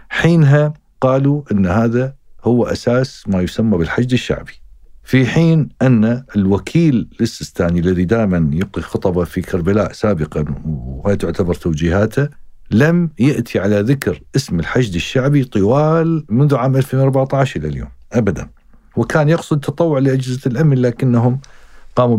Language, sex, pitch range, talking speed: Arabic, male, 100-145 Hz, 120 wpm